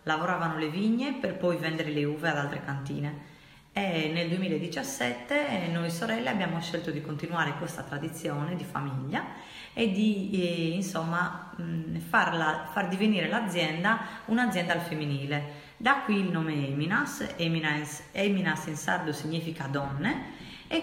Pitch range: 155-195 Hz